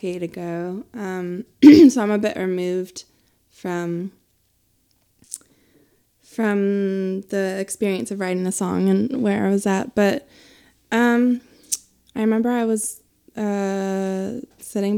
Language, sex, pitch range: English, female, 175-215 Hz